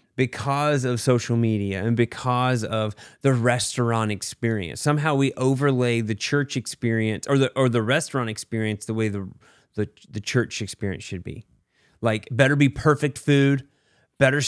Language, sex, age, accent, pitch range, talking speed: English, male, 30-49, American, 110-135 Hz, 155 wpm